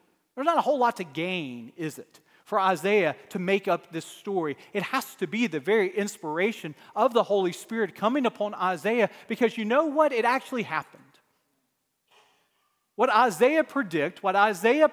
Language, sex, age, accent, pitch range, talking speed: English, male, 40-59, American, 175-250 Hz, 170 wpm